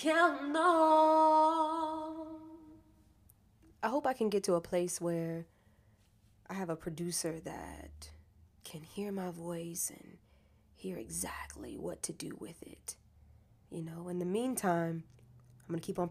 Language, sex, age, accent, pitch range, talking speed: English, female, 20-39, American, 110-185 Hz, 135 wpm